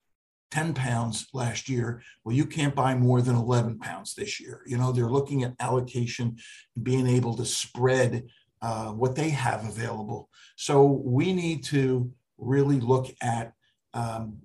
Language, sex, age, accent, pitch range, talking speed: English, male, 50-69, American, 120-135 Hz, 155 wpm